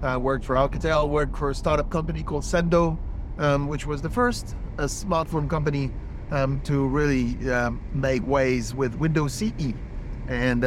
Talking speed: 170 wpm